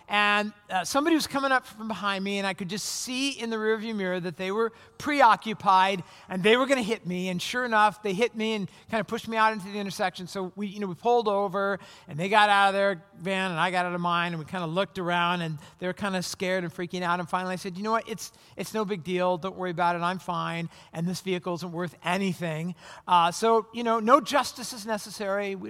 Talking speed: 260 wpm